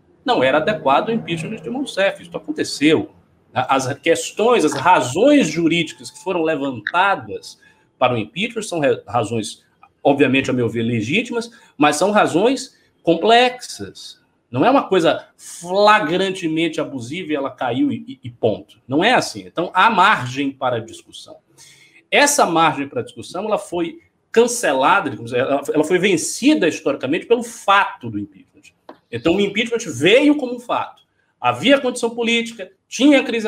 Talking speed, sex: 140 wpm, male